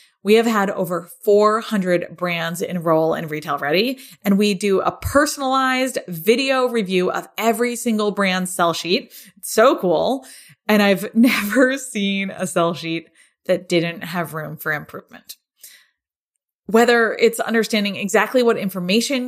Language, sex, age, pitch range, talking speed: English, female, 20-39, 180-245 Hz, 140 wpm